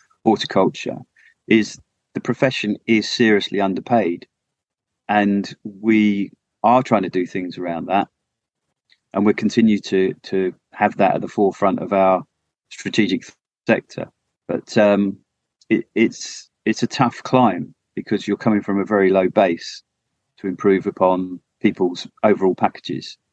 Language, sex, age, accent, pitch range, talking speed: English, male, 30-49, British, 95-110 Hz, 135 wpm